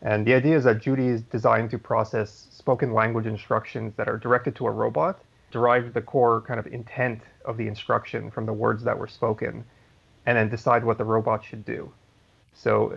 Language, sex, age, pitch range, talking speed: English, male, 30-49, 110-130 Hz, 200 wpm